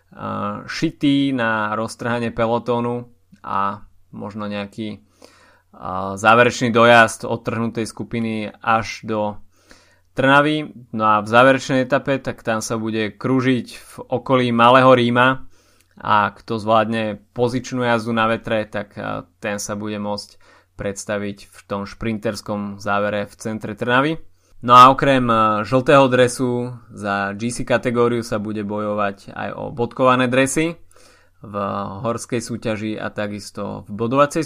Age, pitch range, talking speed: 20-39, 105-125 Hz, 125 wpm